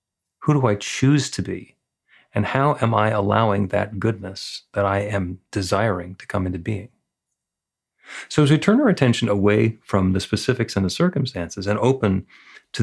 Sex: male